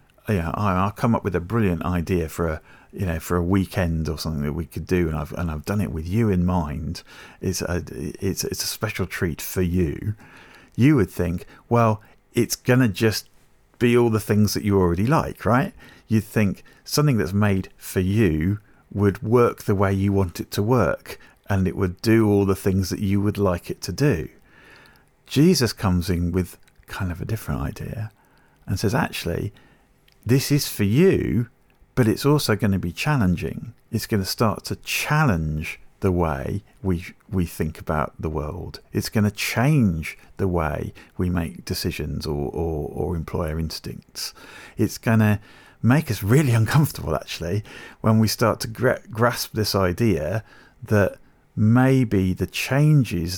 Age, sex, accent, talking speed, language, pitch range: 40-59, male, British, 180 wpm, English, 90-115 Hz